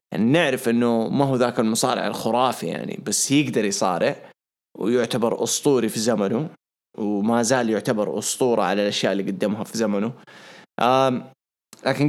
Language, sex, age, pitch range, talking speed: English, male, 20-39, 115-150 Hz, 135 wpm